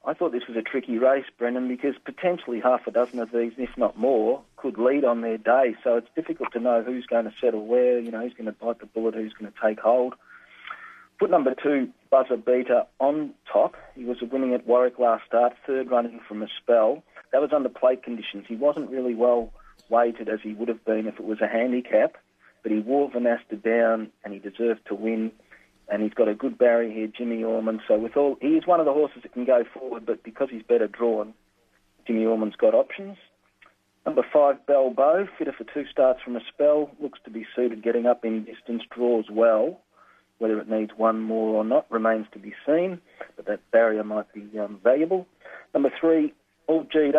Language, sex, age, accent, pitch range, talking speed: English, male, 40-59, Australian, 115-135 Hz, 215 wpm